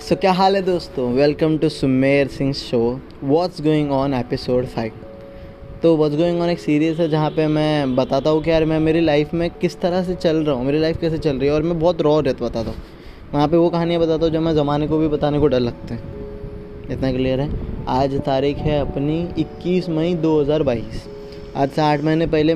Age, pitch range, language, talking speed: 20-39, 135-165 Hz, Hindi, 225 wpm